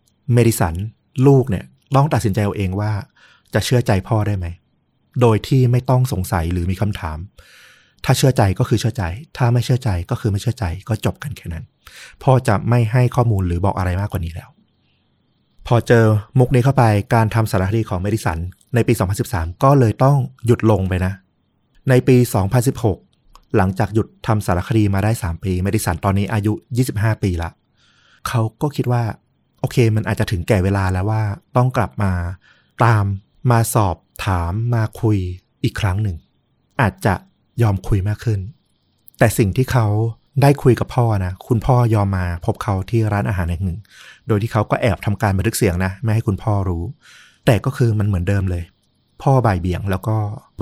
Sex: male